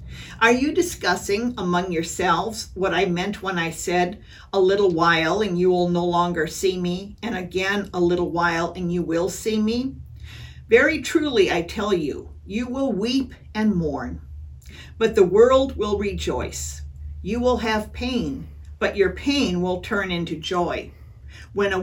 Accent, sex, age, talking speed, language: American, female, 50-69, 160 wpm, English